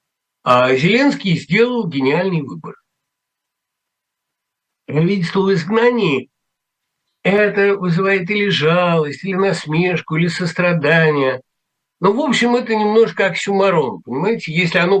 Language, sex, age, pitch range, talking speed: Russian, male, 60-79, 150-200 Hz, 105 wpm